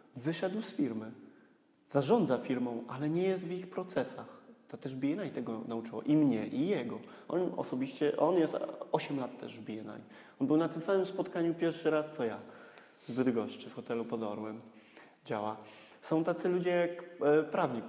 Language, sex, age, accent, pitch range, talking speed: Polish, male, 20-39, native, 125-160 Hz, 170 wpm